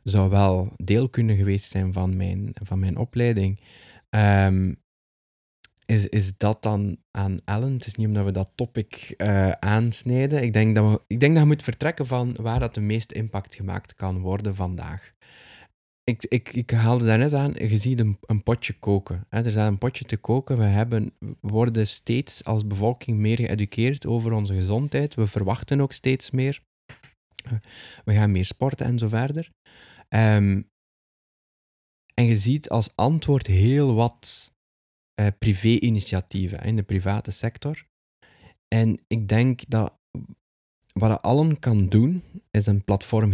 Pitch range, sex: 95-115 Hz, male